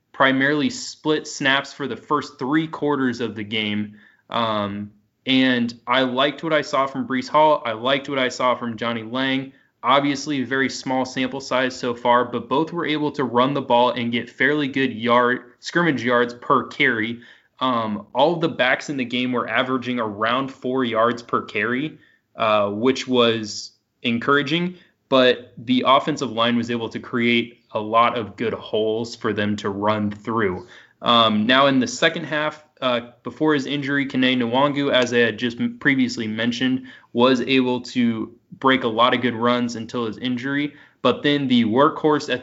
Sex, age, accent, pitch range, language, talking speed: male, 20-39, American, 115-140 Hz, English, 175 wpm